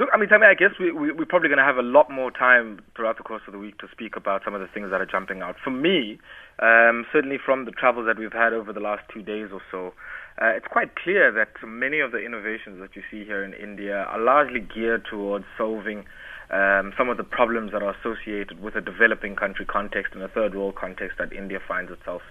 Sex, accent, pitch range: male, South African, 100-120 Hz